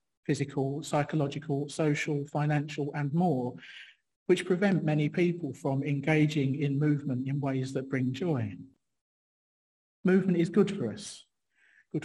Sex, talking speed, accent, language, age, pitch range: male, 125 wpm, British, English, 40-59, 135-165 Hz